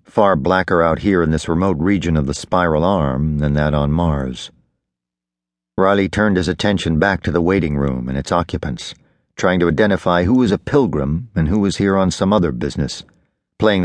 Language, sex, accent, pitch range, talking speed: English, male, American, 70-95 Hz, 190 wpm